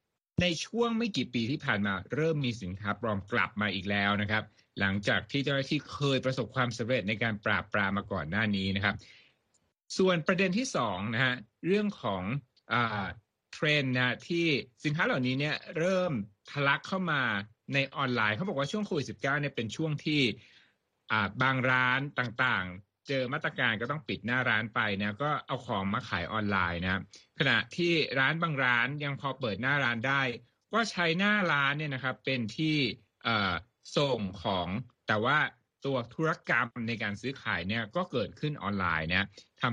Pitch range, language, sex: 105-145 Hz, Thai, male